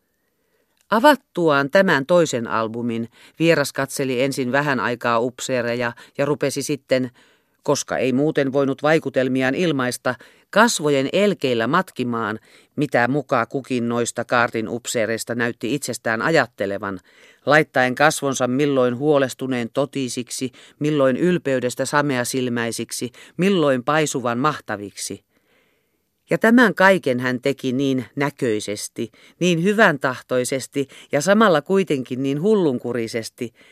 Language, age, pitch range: Finnish, 40-59, 120-150 Hz